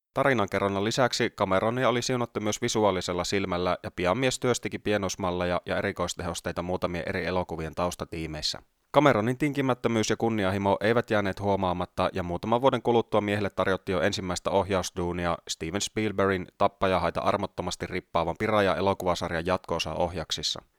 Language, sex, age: Finnish, male, 30-49